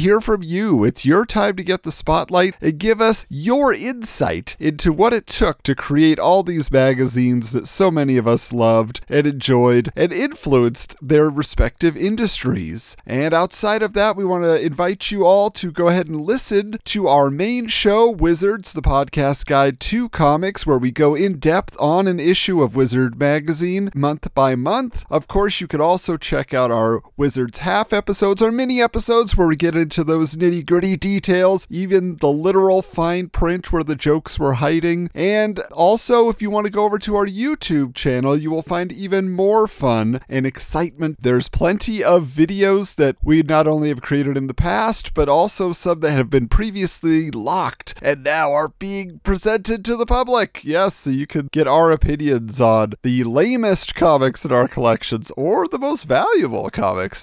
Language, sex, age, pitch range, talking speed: English, male, 30-49, 140-195 Hz, 185 wpm